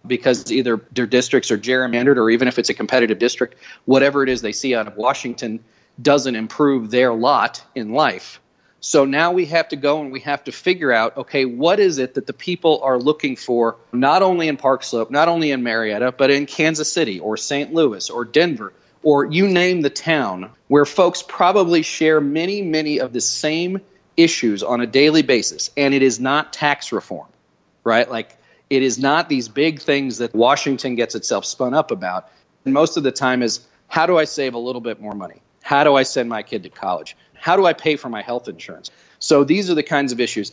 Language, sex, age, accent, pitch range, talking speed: English, male, 40-59, American, 125-155 Hz, 215 wpm